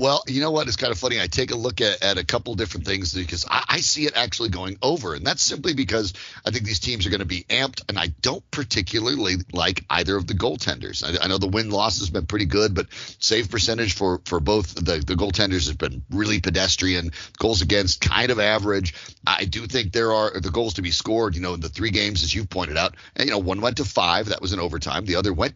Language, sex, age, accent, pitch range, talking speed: English, male, 40-59, American, 90-115 Hz, 260 wpm